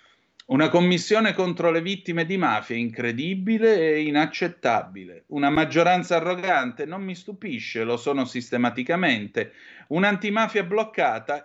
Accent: native